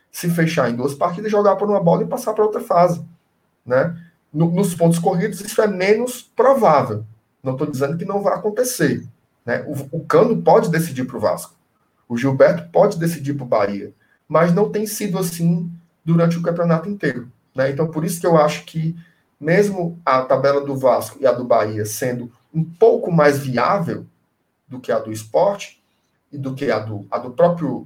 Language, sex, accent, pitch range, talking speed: Portuguese, male, Brazilian, 140-185 Hz, 190 wpm